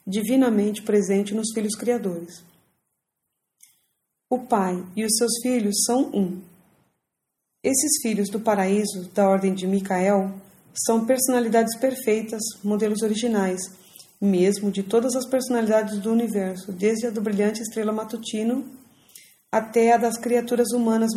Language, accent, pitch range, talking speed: English, Brazilian, 200-235 Hz, 125 wpm